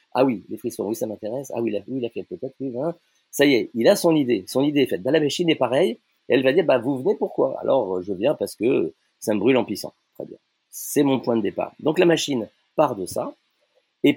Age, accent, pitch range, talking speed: 40-59, French, 110-155 Hz, 255 wpm